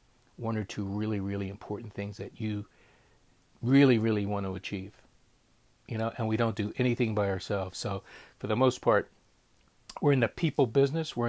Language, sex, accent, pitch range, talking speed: English, male, American, 105-135 Hz, 180 wpm